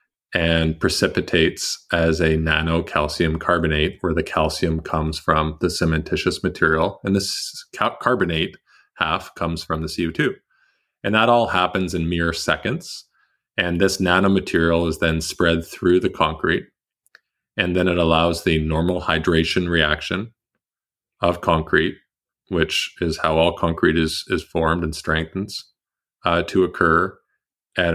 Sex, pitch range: male, 80-90 Hz